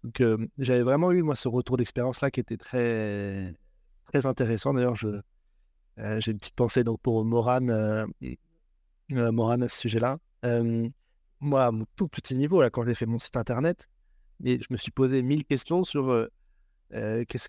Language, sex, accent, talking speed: French, male, French, 190 wpm